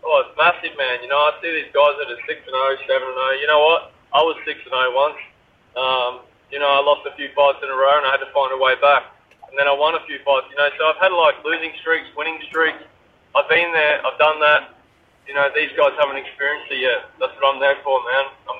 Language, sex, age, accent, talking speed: English, male, 20-39, Australian, 260 wpm